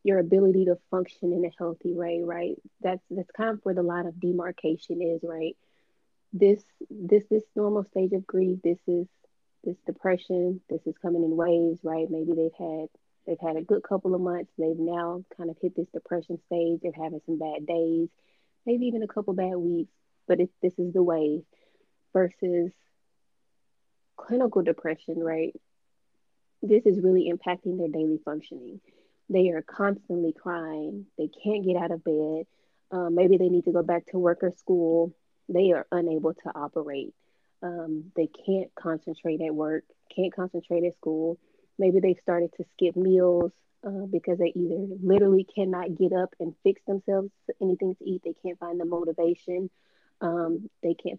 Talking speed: 170 wpm